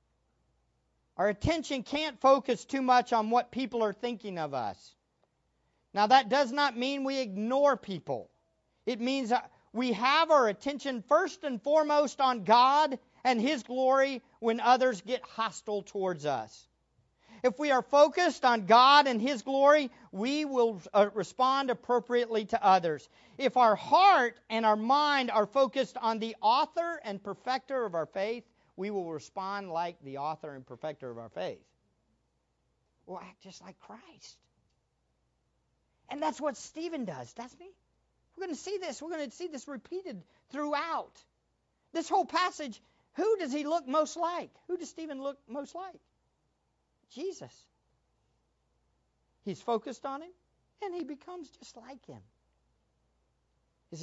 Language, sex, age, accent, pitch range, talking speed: English, male, 50-69, American, 195-285 Hz, 150 wpm